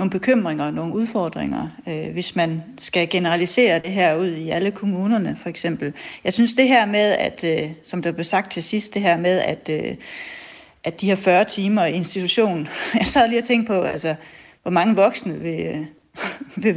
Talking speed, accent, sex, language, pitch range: 195 wpm, native, female, Danish, 165-210 Hz